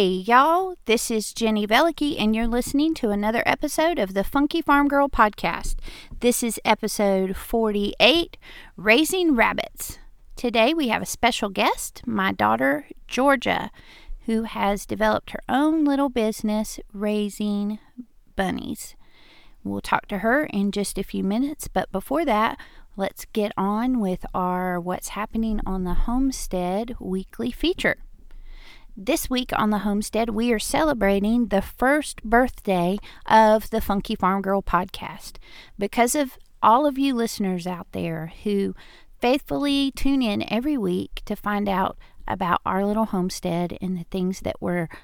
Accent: American